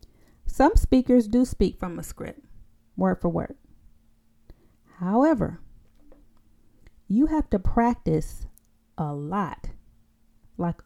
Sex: female